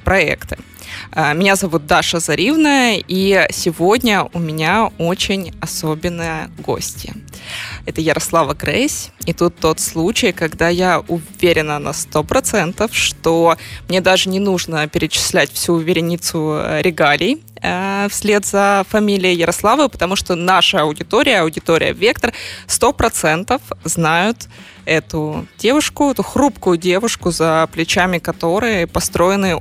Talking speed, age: 110 wpm, 20-39